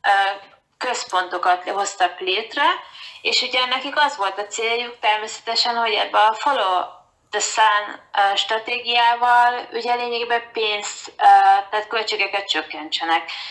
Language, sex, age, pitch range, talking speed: Hungarian, female, 20-39, 185-245 Hz, 105 wpm